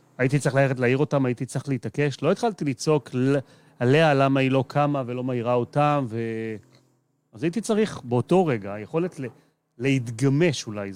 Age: 30-49